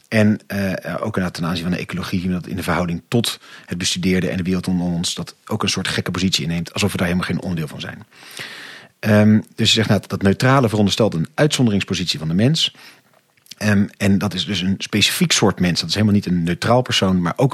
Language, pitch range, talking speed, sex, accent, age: Dutch, 95-120 Hz, 215 wpm, male, Dutch, 40-59